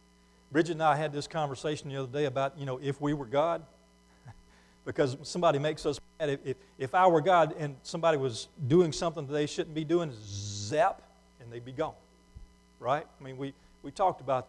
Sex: male